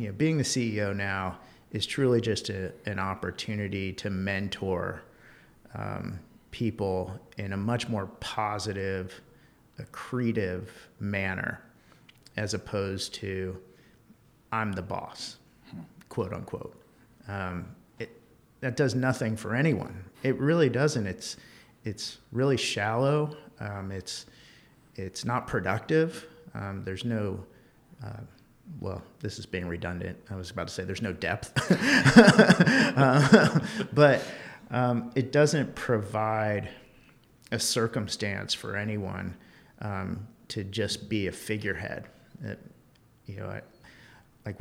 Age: 50-69